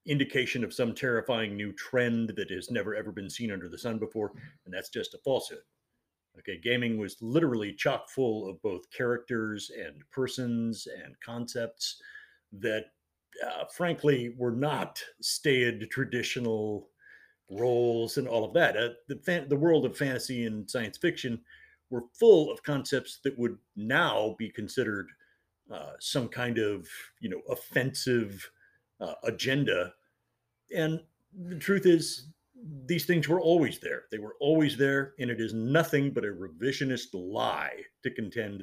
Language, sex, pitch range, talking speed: English, male, 120-160 Hz, 150 wpm